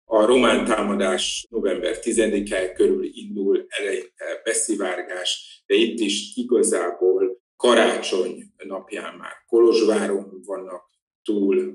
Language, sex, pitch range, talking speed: Hungarian, male, 250-420 Hz, 90 wpm